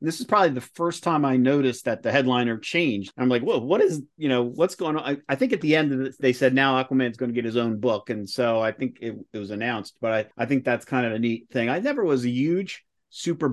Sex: male